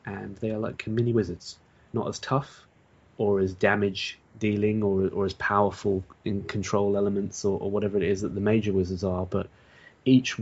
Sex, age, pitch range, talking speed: male, 20-39, 95-105 Hz, 185 wpm